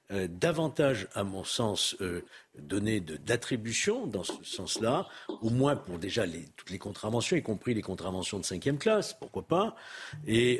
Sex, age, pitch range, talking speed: male, 60-79, 105-145 Hz, 165 wpm